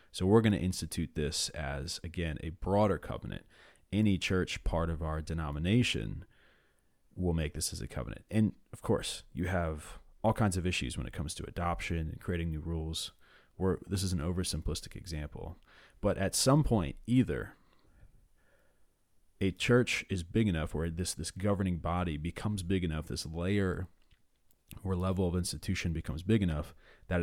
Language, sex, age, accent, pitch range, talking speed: English, male, 30-49, American, 80-95 Hz, 165 wpm